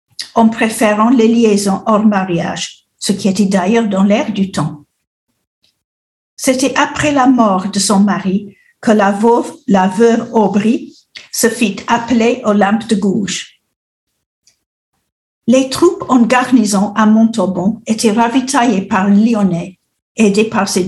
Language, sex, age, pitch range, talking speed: French, female, 50-69, 195-235 Hz, 130 wpm